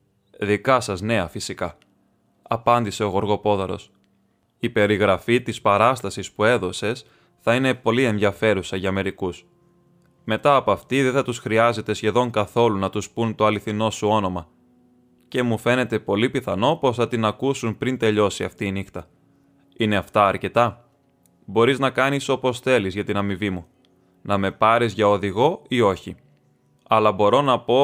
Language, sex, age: Greek, male, 20-39